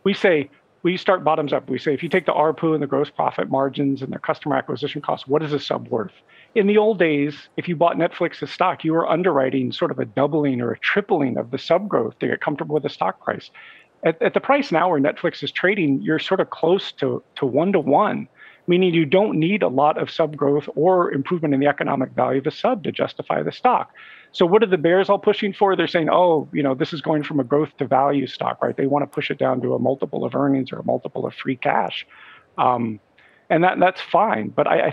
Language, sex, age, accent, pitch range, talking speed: English, male, 50-69, American, 140-185 Hz, 250 wpm